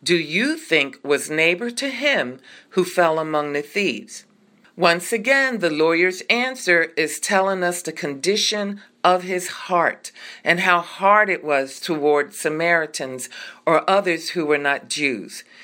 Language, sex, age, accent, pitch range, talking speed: English, female, 50-69, American, 150-195 Hz, 145 wpm